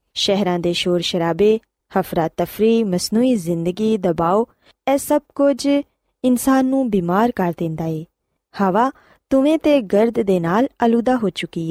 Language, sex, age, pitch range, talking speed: Punjabi, female, 20-39, 180-260 Hz, 150 wpm